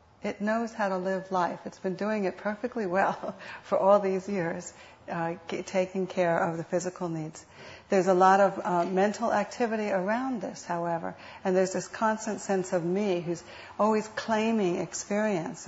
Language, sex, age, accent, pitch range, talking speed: English, female, 60-79, American, 180-215 Hz, 170 wpm